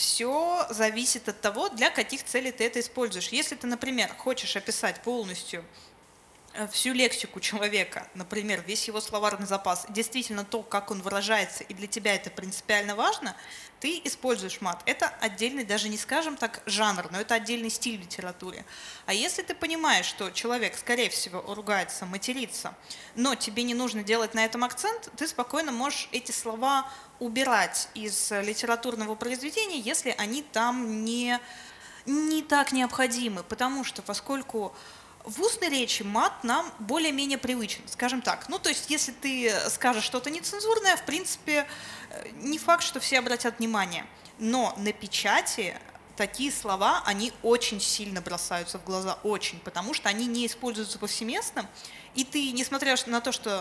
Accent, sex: native, female